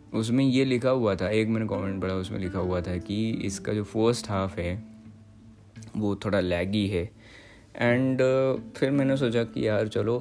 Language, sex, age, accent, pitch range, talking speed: Hindi, male, 20-39, native, 100-125 Hz, 175 wpm